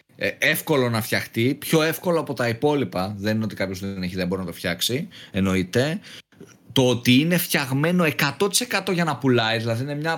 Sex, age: male, 30-49